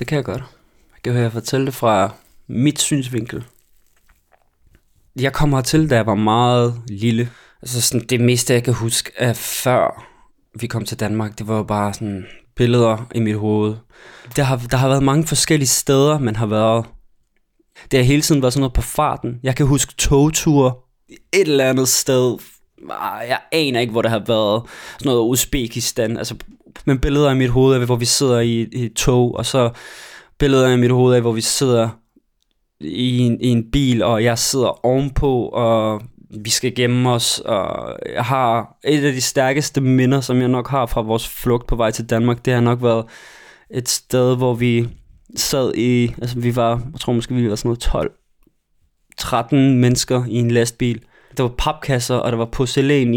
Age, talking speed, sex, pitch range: 20-39, 190 wpm, male, 115-130 Hz